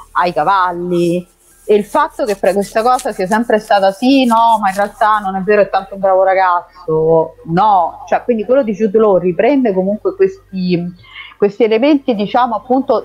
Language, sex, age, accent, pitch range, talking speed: Italian, female, 30-49, native, 180-220 Hz, 175 wpm